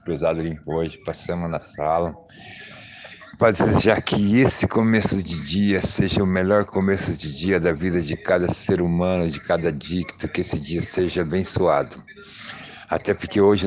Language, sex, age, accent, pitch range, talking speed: Portuguese, male, 60-79, Brazilian, 90-105 Hz, 160 wpm